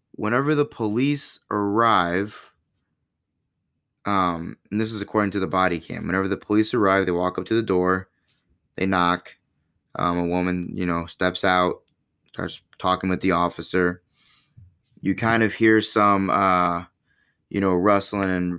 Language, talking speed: English, 150 wpm